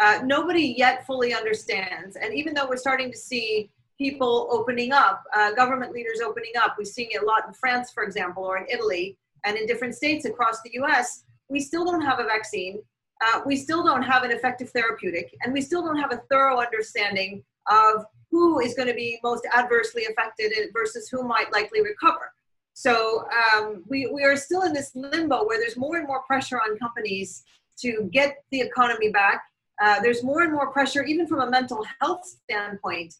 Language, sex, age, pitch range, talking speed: English, female, 40-59, 215-280 Hz, 195 wpm